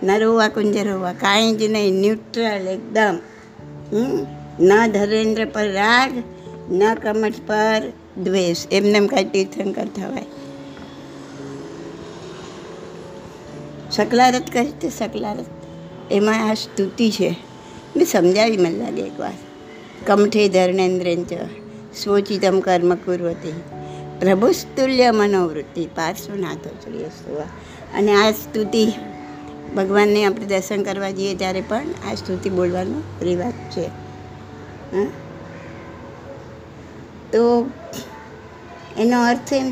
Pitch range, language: 180-230 Hz, Gujarati